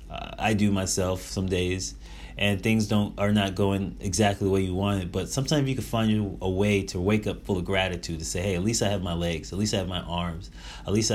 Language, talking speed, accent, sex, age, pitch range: English, 255 wpm, American, male, 30-49, 90-110 Hz